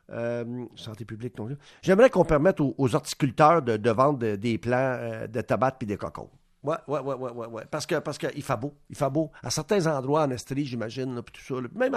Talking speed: 230 wpm